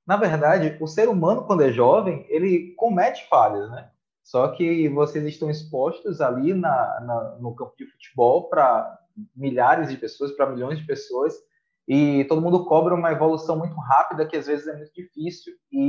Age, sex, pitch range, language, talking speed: 20-39, male, 145-200 Hz, Portuguese, 180 wpm